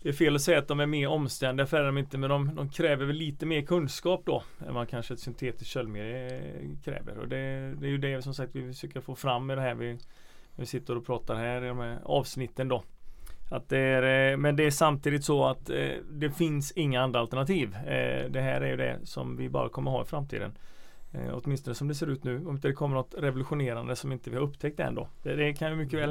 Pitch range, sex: 120-145 Hz, male